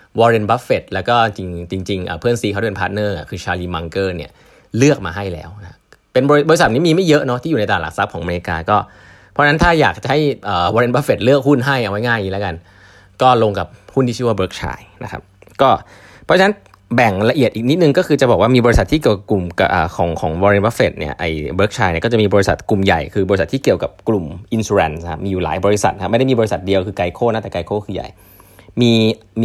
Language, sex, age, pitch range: Thai, male, 20-39, 95-115 Hz